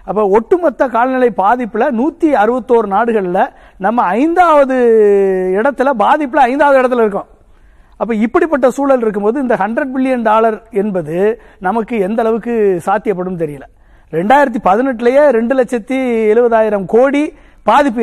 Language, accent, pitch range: Tamil, native, 210-270 Hz